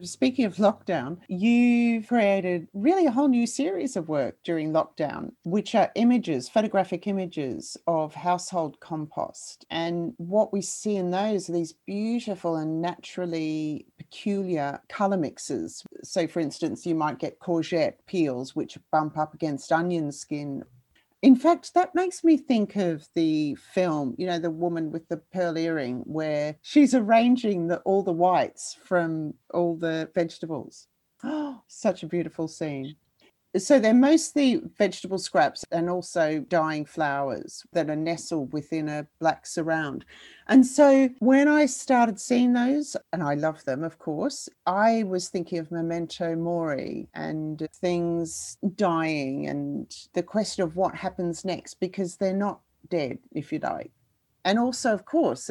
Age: 40-59